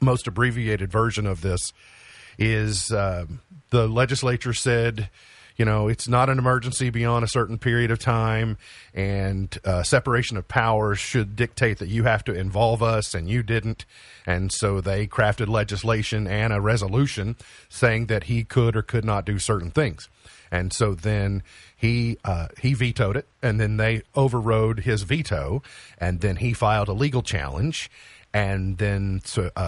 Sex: male